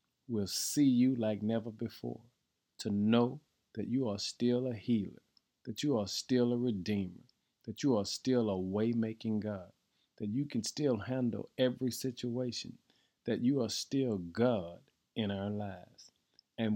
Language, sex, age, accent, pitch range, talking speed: English, male, 50-69, American, 100-125 Hz, 155 wpm